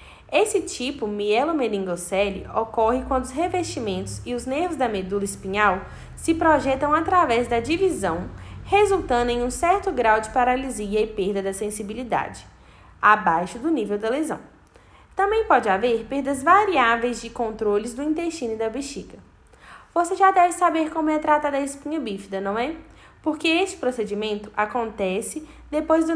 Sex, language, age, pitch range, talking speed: female, Portuguese, 10-29, 215-320 Hz, 150 wpm